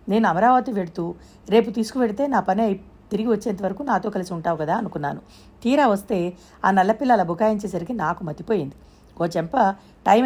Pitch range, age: 175-225 Hz, 50-69